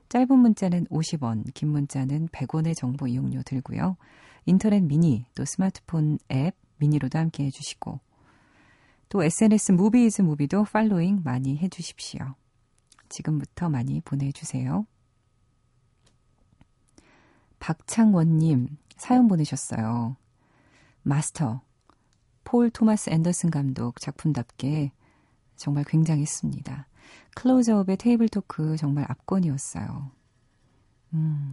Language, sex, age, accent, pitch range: Korean, female, 40-59, native, 130-170 Hz